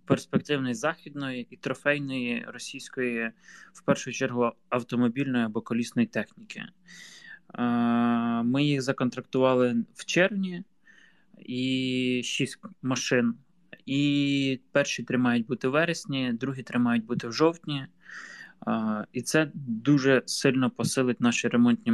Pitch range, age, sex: 120-145 Hz, 20-39, male